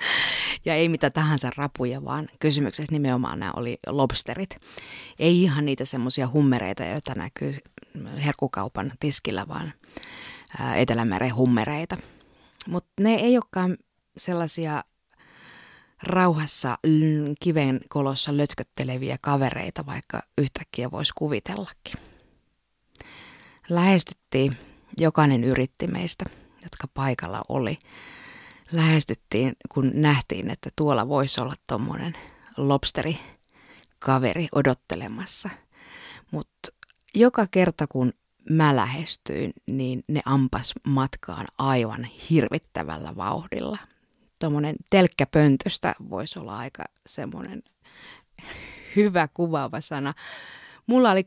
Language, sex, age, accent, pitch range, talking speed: Finnish, female, 20-39, native, 135-170 Hz, 90 wpm